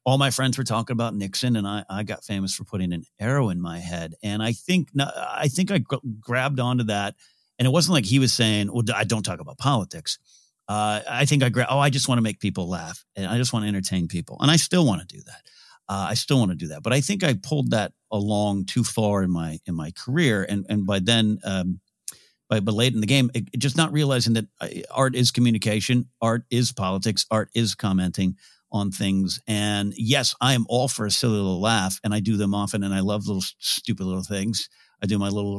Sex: male